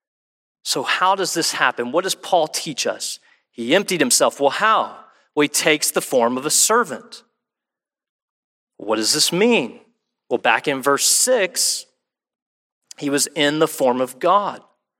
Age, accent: 40-59, American